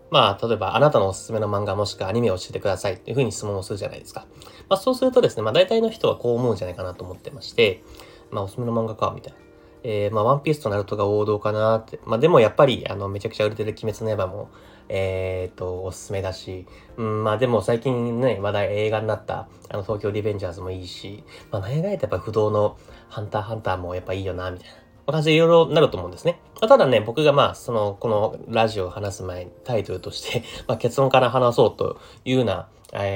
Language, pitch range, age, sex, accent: Japanese, 95-125 Hz, 30-49, male, native